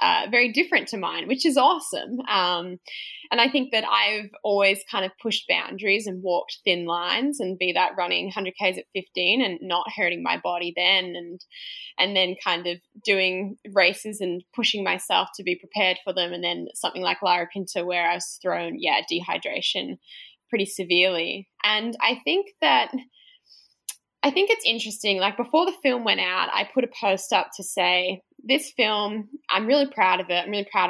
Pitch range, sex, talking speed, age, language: 180-230 Hz, female, 190 wpm, 10-29, English